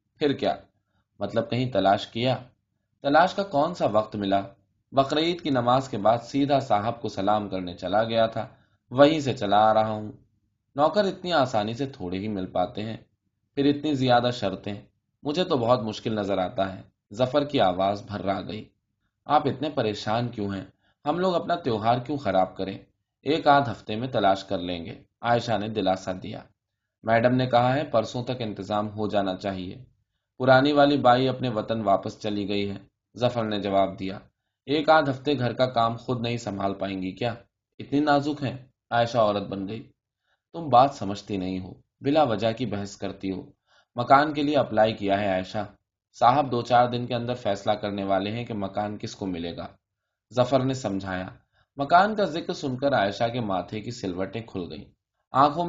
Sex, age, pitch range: male, 20-39, 100-130 Hz